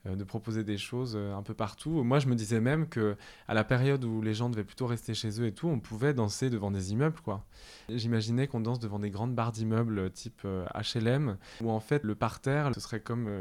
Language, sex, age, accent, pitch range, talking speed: French, male, 20-39, French, 105-125 Hz, 225 wpm